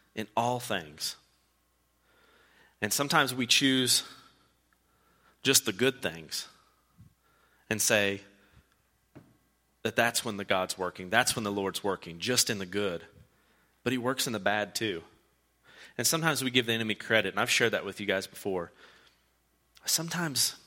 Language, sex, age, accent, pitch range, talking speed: English, male, 30-49, American, 100-130 Hz, 150 wpm